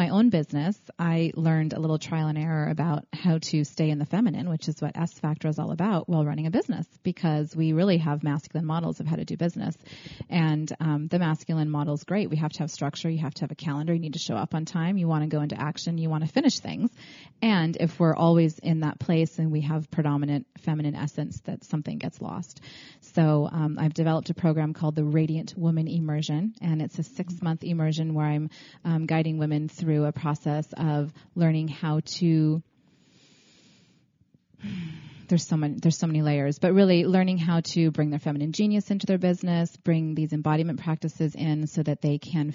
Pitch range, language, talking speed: 150-170 Hz, English, 205 wpm